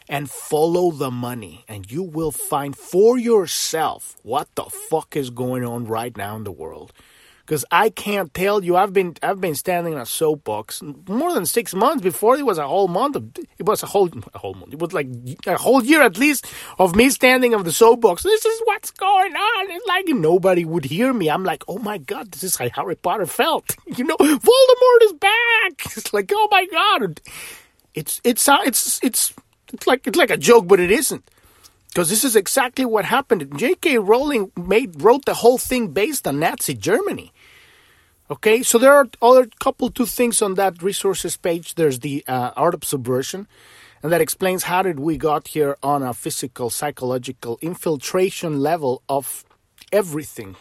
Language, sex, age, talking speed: English, male, 30-49, 190 wpm